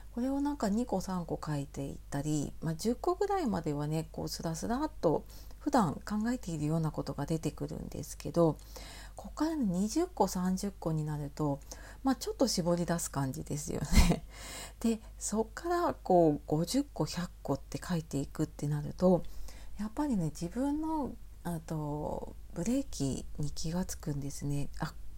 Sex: female